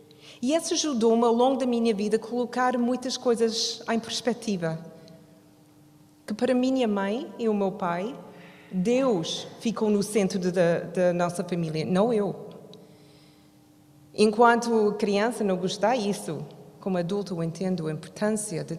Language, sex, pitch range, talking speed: Portuguese, female, 175-235 Hz, 135 wpm